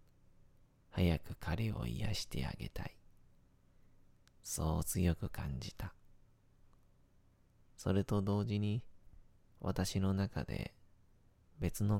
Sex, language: male, Japanese